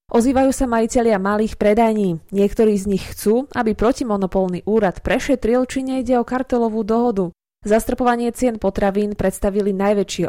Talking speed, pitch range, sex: 135 wpm, 190-235 Hz, female